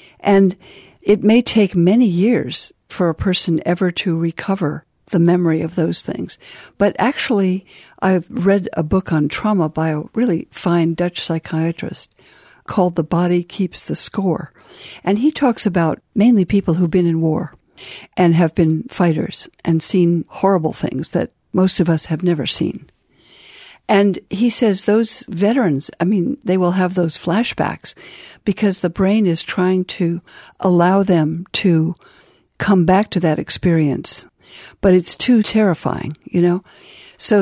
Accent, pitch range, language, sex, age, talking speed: American, 165-200 Hz, English, female, 60-79, 150 wpm